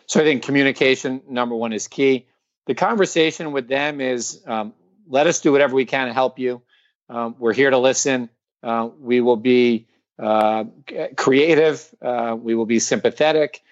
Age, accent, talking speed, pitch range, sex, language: 40-59, American, 170 wpm, 115-140 Hz, male, English